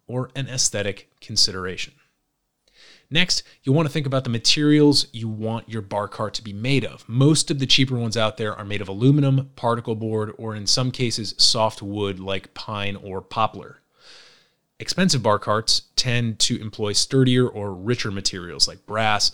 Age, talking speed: 30-49, 175 wpm